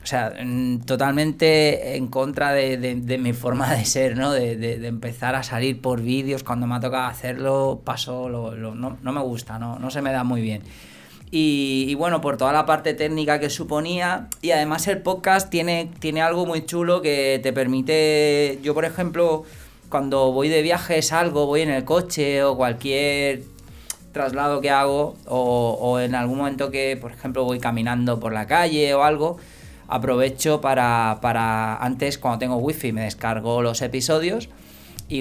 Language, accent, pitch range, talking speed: Spanish, Spanish, 120-150 Hz, 175 wpm